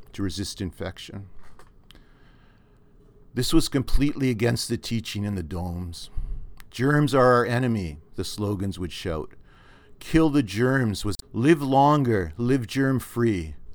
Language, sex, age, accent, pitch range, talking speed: English, male, 50-69, American, 95-120 Hz, 120 wpm